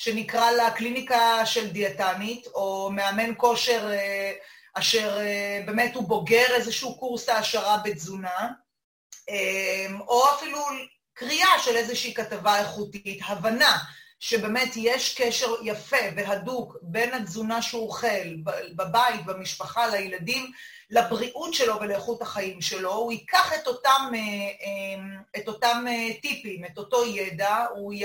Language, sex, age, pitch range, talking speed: Hebrew, female, 30-49, 200-245 Hz, 110 wpm